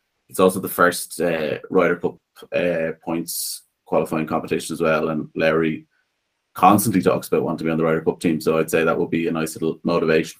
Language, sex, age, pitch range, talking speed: English, male, 30-49, 80-90 Hz, 210 wpm